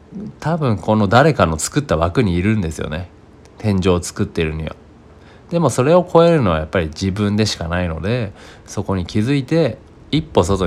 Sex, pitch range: male, 85-110 Hz